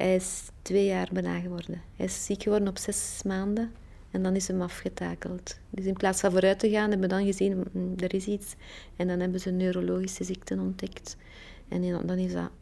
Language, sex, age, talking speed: Dutch, female, 30-49, 205 wpm